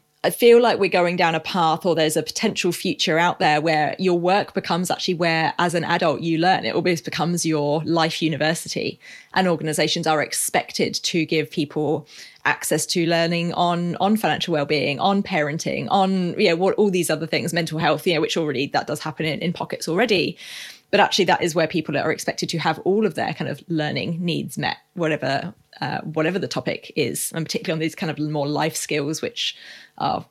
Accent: British